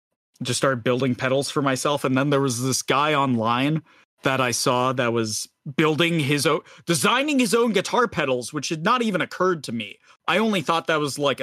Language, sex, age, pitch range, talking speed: English, male, 30-49, 125-165 Hz, 205 wpm